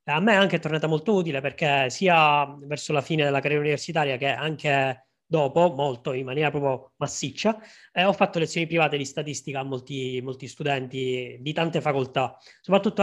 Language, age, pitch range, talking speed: Italian, 20-39, 145-170 Hz, 175 wpm